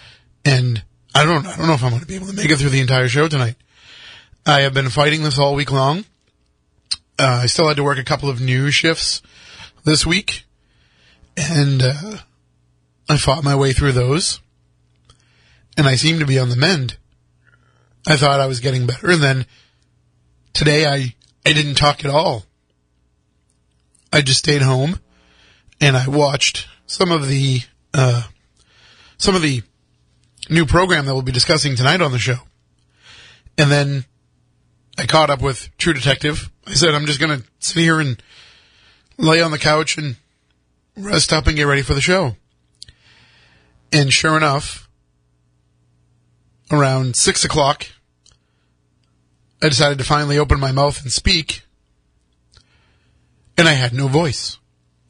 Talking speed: 160 wpm